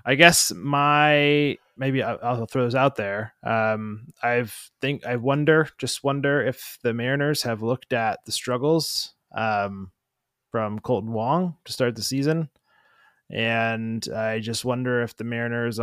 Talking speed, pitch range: 150 wpm, 115-140 Hz